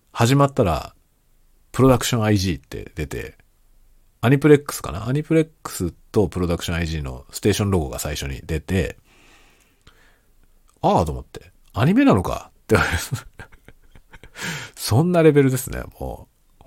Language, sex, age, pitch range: Japanese, male, 50-69, 80-120 Hz